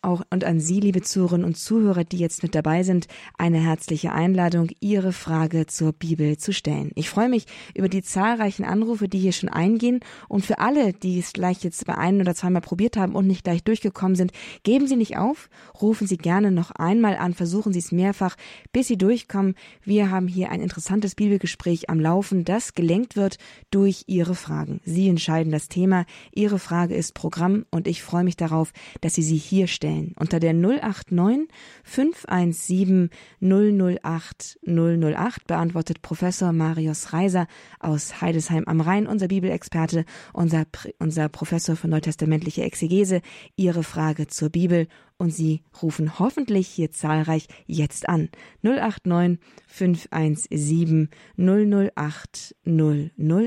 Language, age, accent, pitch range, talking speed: German, 20-39, German, 165-200 Hz, 155 wpm